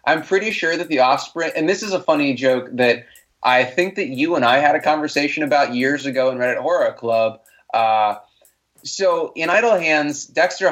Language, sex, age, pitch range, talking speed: English, male, 20-39, 125-160 Hz, 200 wpm